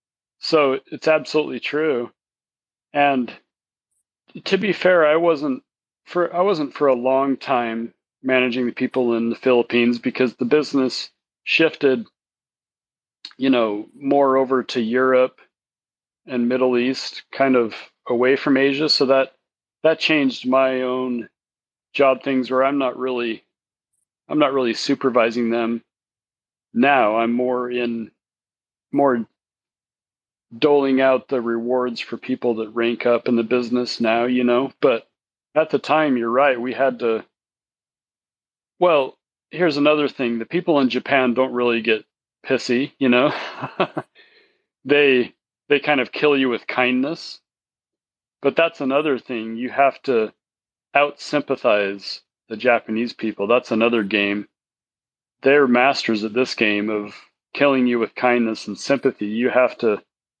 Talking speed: 135 wpm